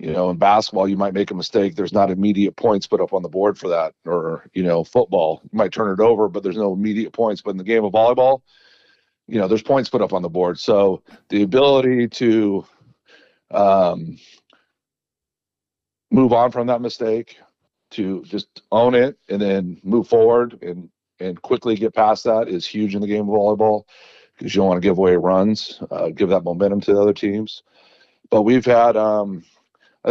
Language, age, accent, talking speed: English, 40-59, American, 200 wpm